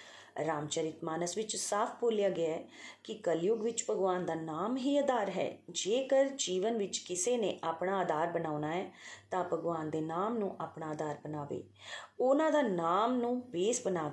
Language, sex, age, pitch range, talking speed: Punjabi, female, 30-49, 160-220 Hz, 165 wpm